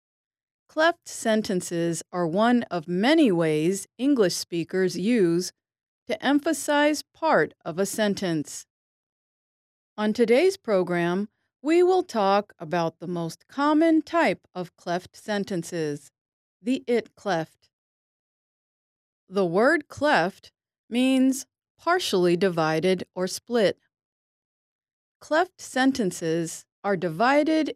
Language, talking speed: English, 95 wpm